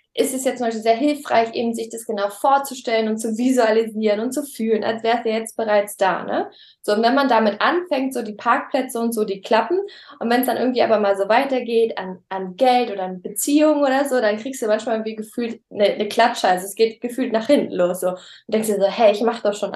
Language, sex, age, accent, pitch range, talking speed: German, female, 20-39, German, 225-270 Hz, 250 wpm